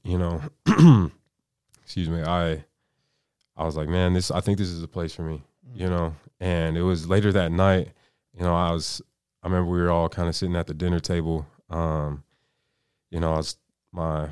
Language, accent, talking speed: English, American, 195 wpm